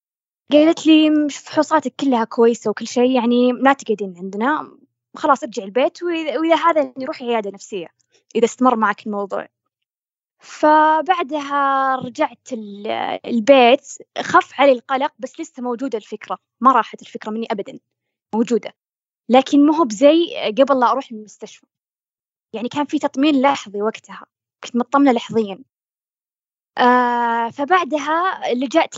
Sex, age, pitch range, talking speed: female, 20-39, 225-290 Hz, 120 wpm